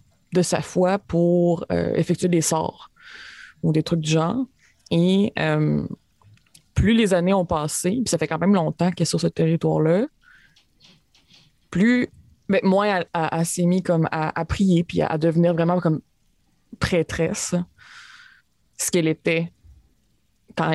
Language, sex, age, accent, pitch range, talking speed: French, female, 20-39, Canadian, 160-200 Hz, 155 wpm